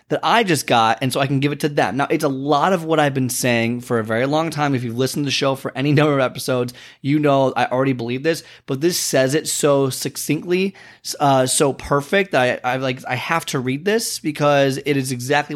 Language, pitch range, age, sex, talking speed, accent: English, 125-155 Hz, 20-39, male, 245 wpm, American